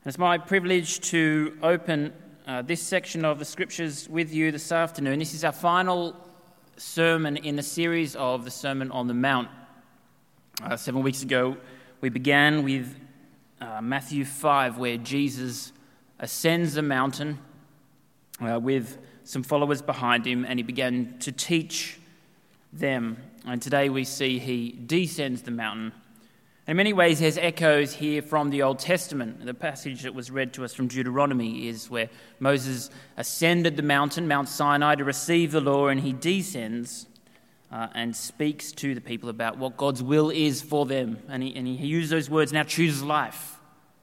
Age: 20-39